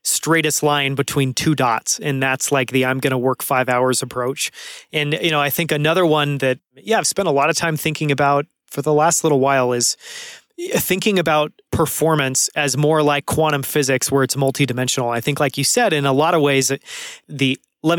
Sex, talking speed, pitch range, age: male, 205 wpm, 130-155 Hz, 30-49